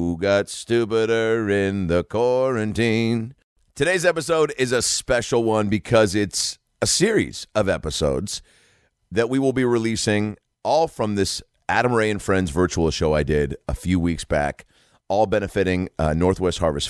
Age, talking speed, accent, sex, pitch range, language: 40-59, 150 wpm, American, male, 75-105 Hz, English